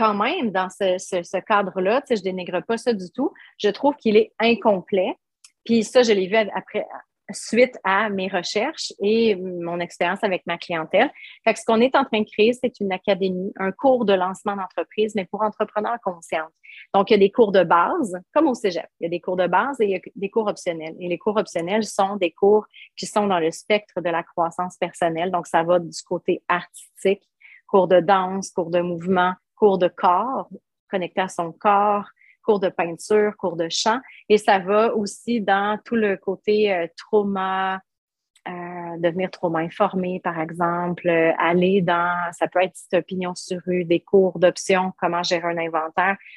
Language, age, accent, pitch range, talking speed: French, 30-49, Canadian, 180-215 Hz, 200 wpm